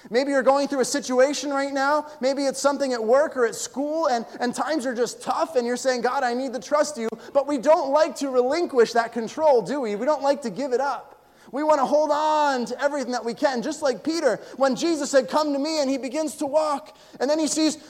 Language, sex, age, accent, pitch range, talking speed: English, male, 20-39, American, 245-295 Hz, 255 wpm